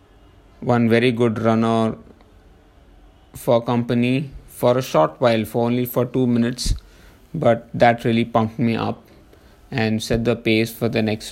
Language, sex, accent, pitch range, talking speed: English, male, Indian, 115-130 Hz, 150 wpm